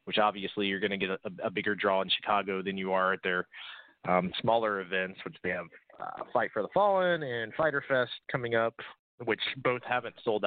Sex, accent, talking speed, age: male, American, 210 wpm, 20-39